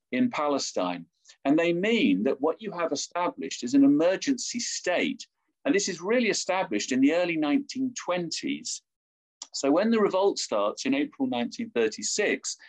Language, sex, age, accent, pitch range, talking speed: English, male, 50-69, British, 175-275 Hz, 145 wpm